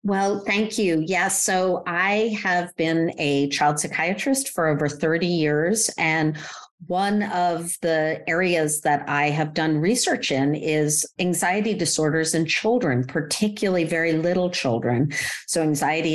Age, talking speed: 50-69, 140 wpm